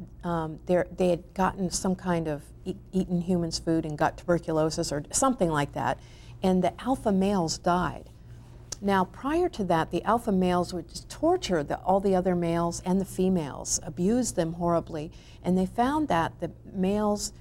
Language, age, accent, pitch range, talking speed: English, 50-69, American, 155-185 Hz, 160 wpm